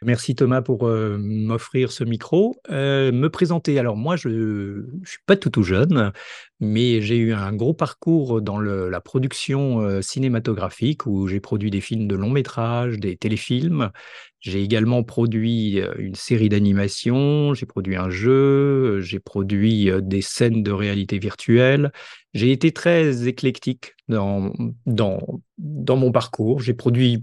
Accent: French